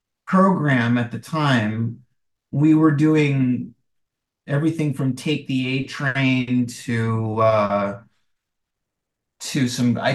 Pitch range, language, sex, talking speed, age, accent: 115-150 Hz, English, male, 100 wpm, 50-69, American